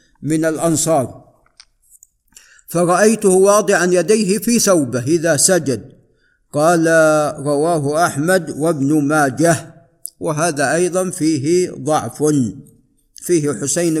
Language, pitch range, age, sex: Arabic, 145-185 Hz, 50-69, male